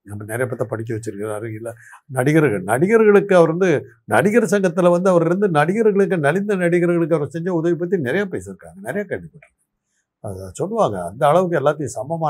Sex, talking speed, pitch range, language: male, 150 wpm, 120-170 Hz, Tamil